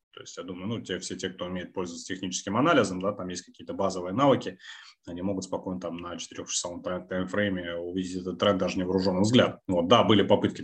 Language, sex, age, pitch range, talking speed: Russian, male, 20-39, 90-105 Hz, 210 wpm